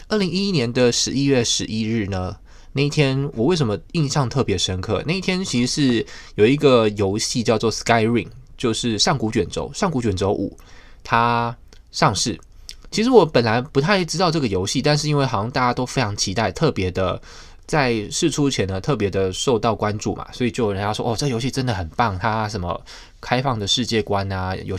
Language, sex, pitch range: Chinese, male, 100-135 Hz